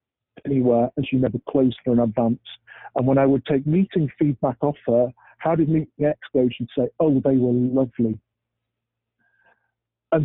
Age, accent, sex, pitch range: 50-69, British, male, 125-145 Hz